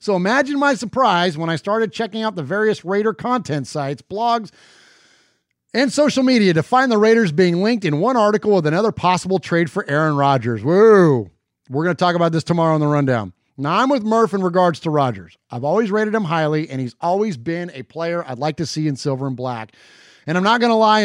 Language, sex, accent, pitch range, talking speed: English, male, American, 145-200 Hz, 220 wpm